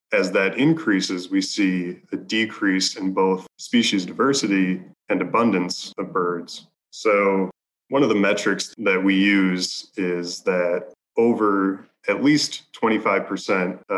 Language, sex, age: English, male, 20-39